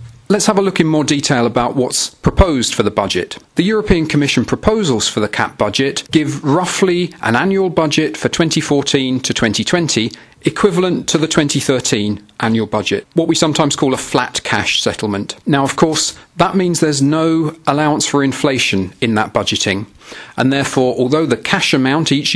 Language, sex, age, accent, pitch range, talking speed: English, male, 40-59, British, 120-165 Hz, 170 wpm